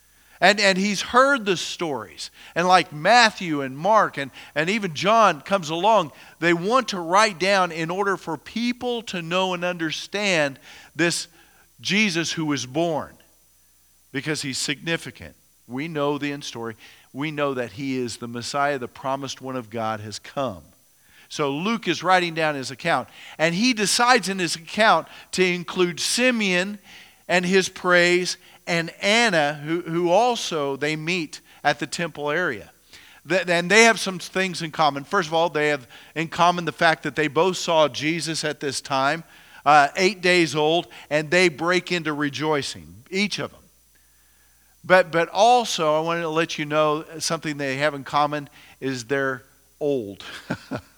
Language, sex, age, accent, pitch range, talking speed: English, male, 50-69, American, 145-185 Hz, 165 wpm